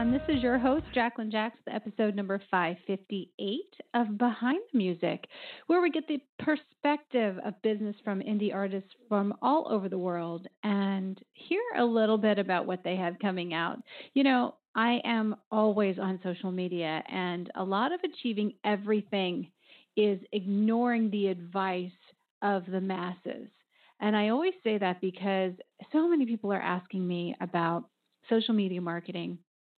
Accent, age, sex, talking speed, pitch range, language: American, 40-59, female, 155 wpm, 190-235 Hz, English